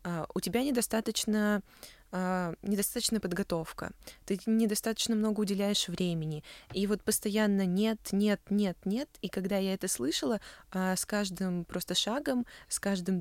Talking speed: 125 wpm